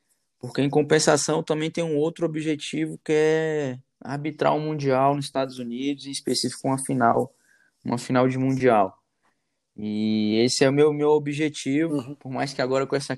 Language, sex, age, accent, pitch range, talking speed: Portuguese, male, 20-39, Brazilian, 120-145 Hz, 170 wpm